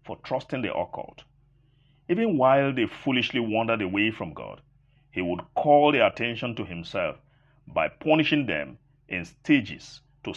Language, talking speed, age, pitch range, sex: English, 140 wpm, 50-69, 110-140 Hz, male